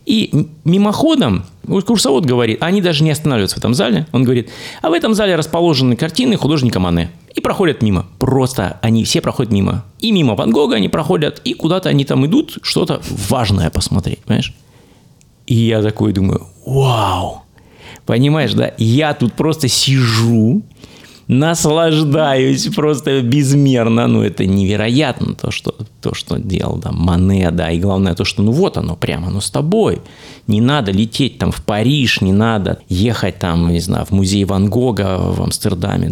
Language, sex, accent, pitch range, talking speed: Russian, male, native, 105-155 Hz, 165 wpm